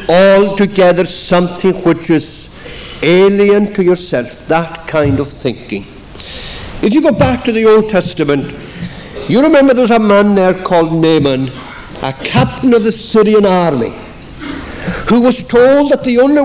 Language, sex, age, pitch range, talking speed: English, male, 60-79, 165-240 Hz, 140 wpm